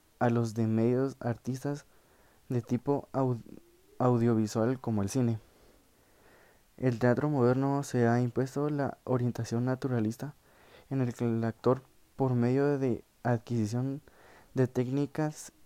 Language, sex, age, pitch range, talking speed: Spanish, male, 20-39, 115-135 Hz, 125 wpm